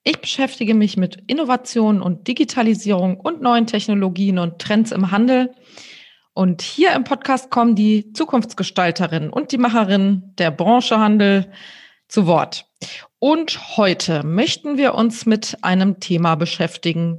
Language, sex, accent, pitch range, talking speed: German, female, German, 175-235 Hz, 135 wpm